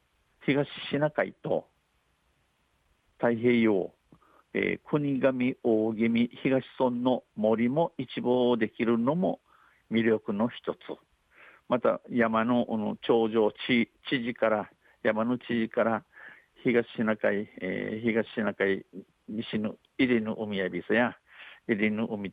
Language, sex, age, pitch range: Japanese, male, 50-69, 110-125 Hz